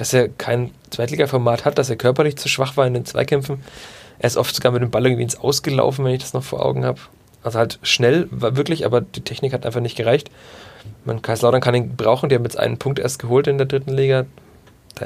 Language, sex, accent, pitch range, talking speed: German, male, German, 120-135 Hz, 245 wpm